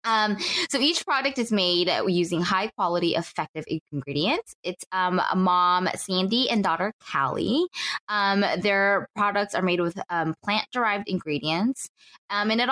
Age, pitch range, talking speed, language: 10-29, 160-225 Hz, 140 wpm, English